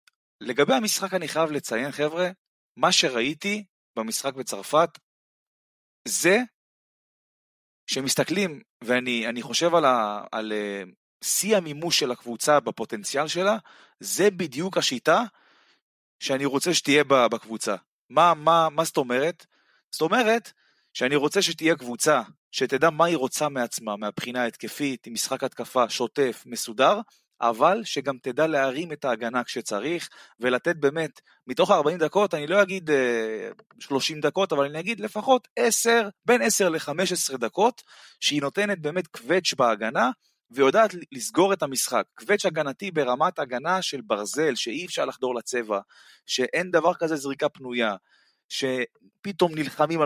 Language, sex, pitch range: Hebrew, male, 125-180 Hz